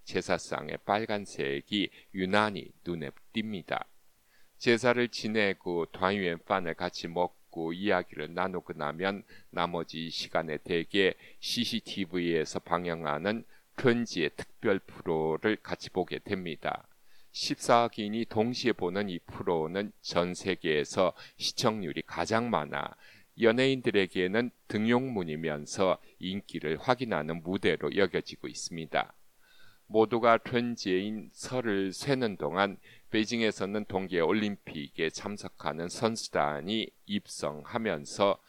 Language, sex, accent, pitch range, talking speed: English, male, Korean, 85-110 Hz, 80 wpm